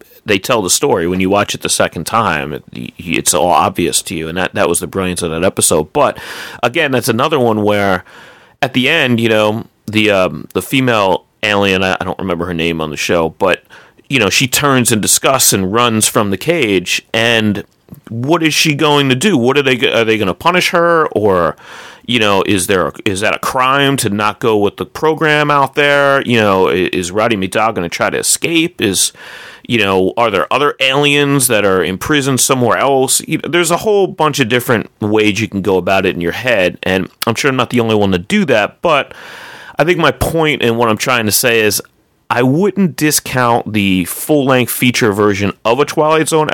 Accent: American